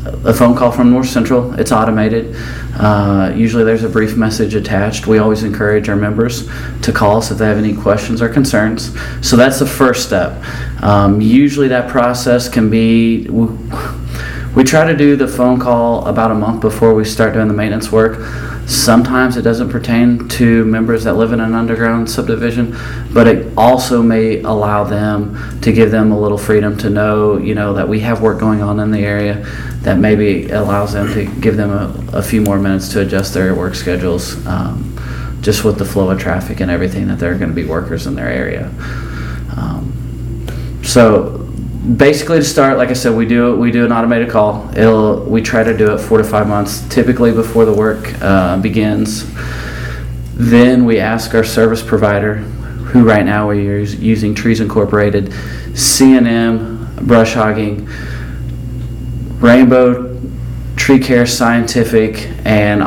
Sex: male